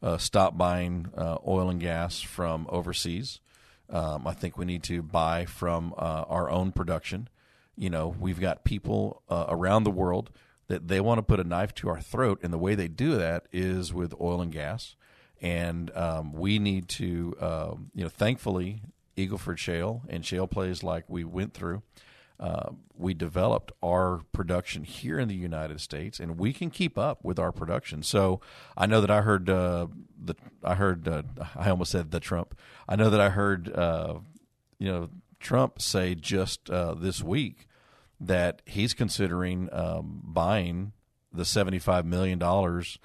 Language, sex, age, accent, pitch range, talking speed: English, male, 50-69, American, 85-100 Hz, 175 wpm